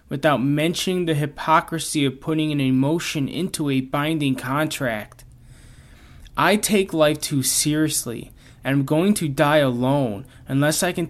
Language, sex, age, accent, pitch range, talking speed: English, male, 20-39, American, 115-155 Hz, 140 wpm